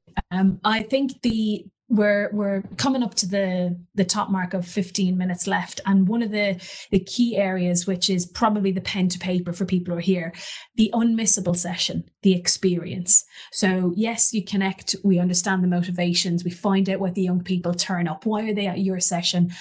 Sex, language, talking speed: female, English, 195 wpm